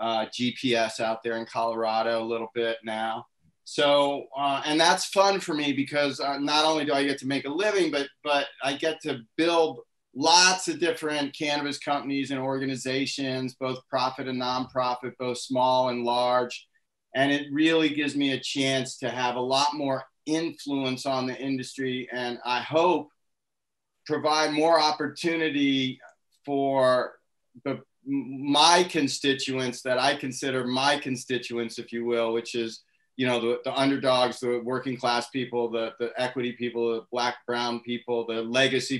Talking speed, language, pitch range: 160 wpm, English, 120-145 Hz